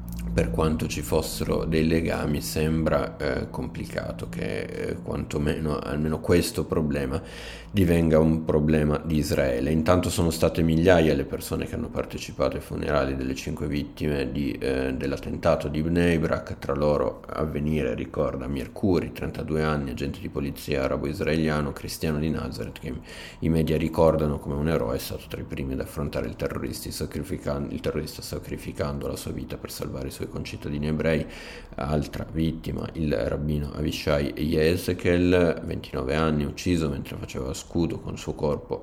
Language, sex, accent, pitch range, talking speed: Italian, male, native, 75-80 Hz, 145 wpm